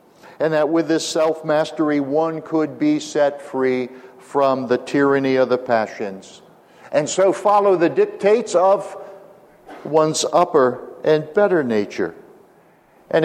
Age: 60-79